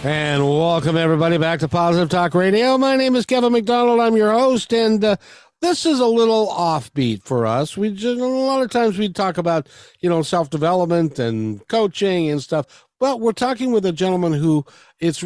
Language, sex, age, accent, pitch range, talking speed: English, male, 60-79, American, 135-205 Hz, 195 wpm